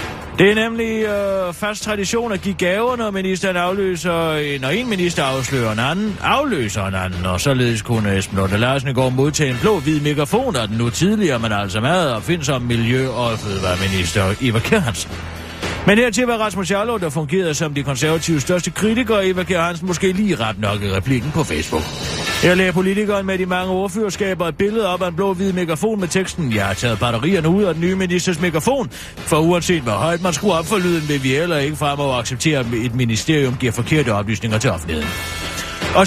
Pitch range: 120-185 Hz